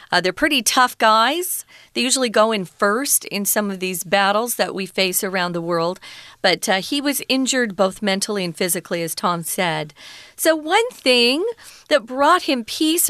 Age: 40-59